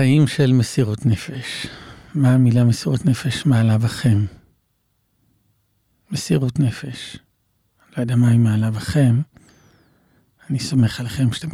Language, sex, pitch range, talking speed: Hebrew, male, 120-150 Hz, 105 wpm